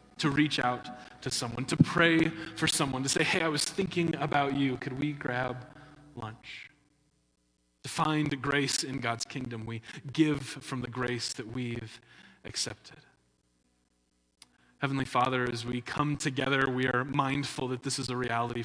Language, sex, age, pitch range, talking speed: English, male, 20-39, 125-150 Hz, 160 wpm